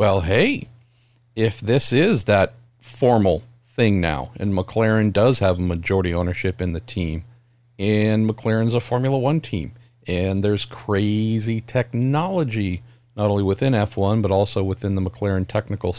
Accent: American